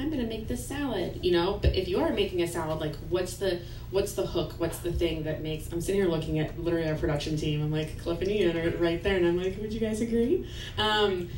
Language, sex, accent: English, female, American